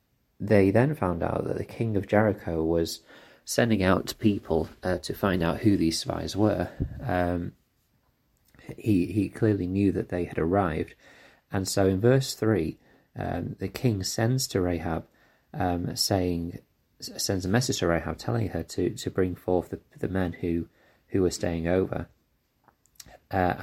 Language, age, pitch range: English, 30-49, 90-115 Hz